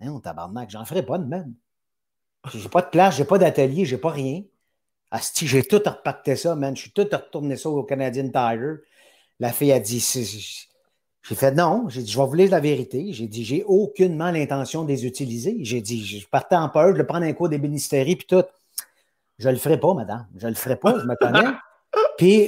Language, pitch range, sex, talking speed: French, 135-185 Hz, male, 220 wpm